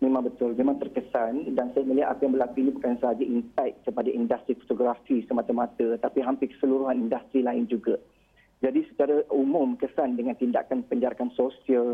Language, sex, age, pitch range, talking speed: Malay, male, 40-59, 125-150 Hz, 160 wpm